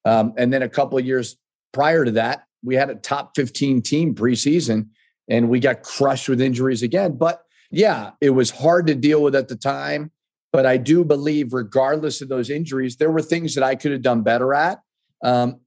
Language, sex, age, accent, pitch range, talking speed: English, male, 40-59, American, 120-150 Hz, 205 wpm